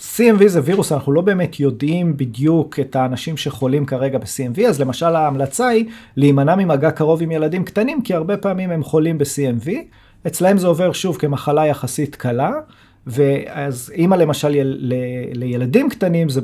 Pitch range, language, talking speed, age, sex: 125-165 Hz, Hebrew, 165 wpm, 30-49, male